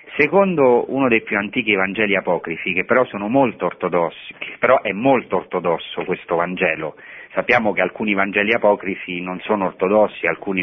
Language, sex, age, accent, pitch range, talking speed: Italian, male, 40-59, native, 90-115 Hz, 150 wpm